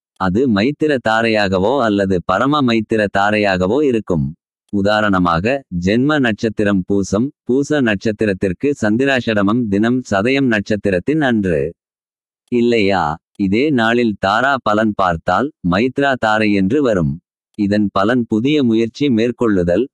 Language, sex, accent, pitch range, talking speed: Tamil, male, native, 100-120 Hz, 100 wpm